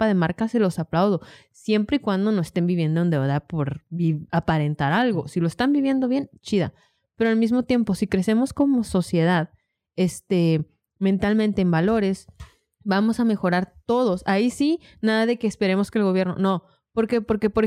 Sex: female